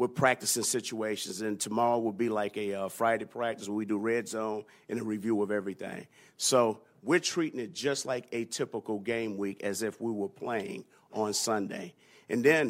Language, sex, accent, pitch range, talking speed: English, male, American, 105-130 Hz, 195 wpm